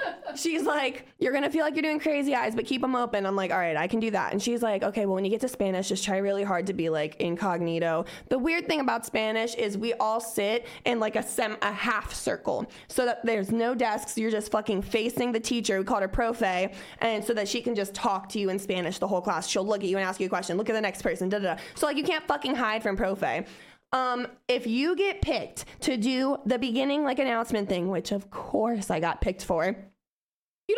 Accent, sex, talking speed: American, female, 255 wpm